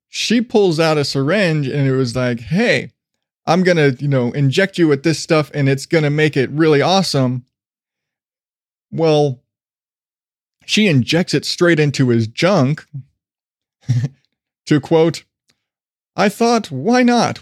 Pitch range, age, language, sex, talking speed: 150-220 Hz, 20-39, English, male, 145 wpm